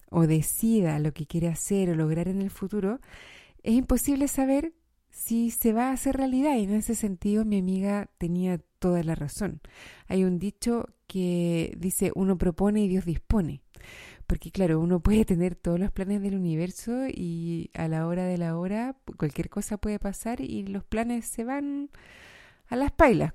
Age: 30-49